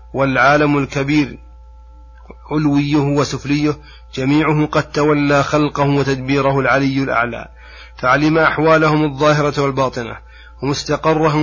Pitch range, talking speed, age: 135-150 Hz, 85 wpm, 30-49